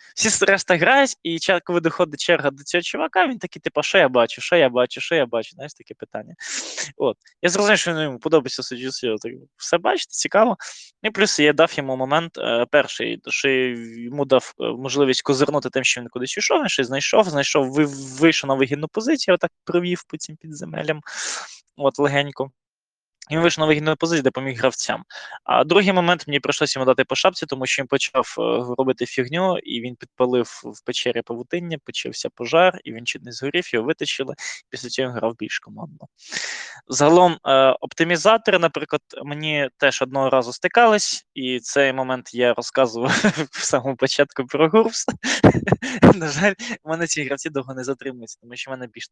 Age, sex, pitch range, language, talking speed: 20-39, male, 130-165 Hz, Ukrainian, 170 wpm